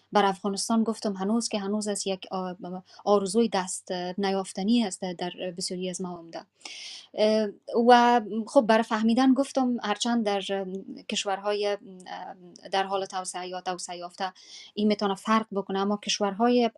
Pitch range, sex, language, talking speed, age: 190-235 Hz, female, Persian, 130 wpm, 20-39